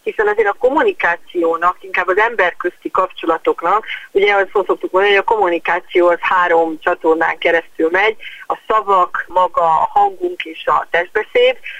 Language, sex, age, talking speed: Hungarian, female, 30-49, 140 wpm